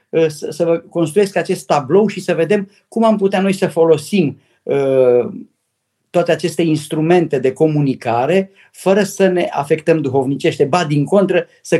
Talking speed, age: 135 wpm, 50-69